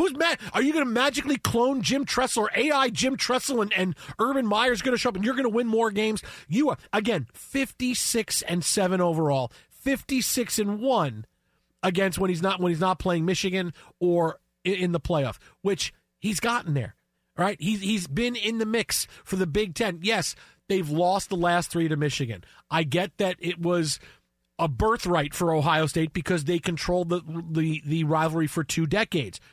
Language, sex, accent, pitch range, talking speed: English, male, American, 160-225 Hz, 195 wpm